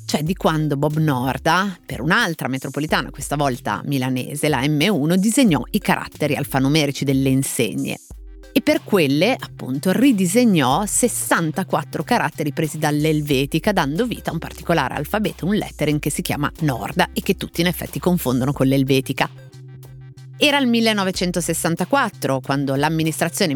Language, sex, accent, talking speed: Italian, female, native, 135 wpm